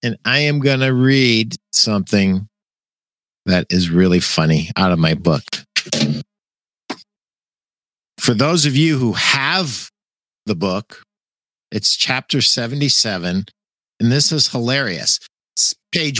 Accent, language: American, English